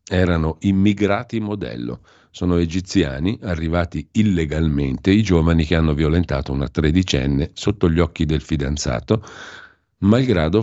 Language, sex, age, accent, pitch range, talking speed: Italian, male, 50-69, native, 75-95 Hz, 115 wpm